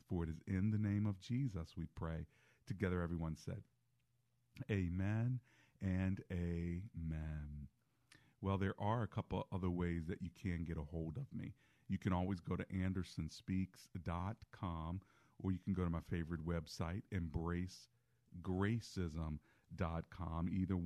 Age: 40-59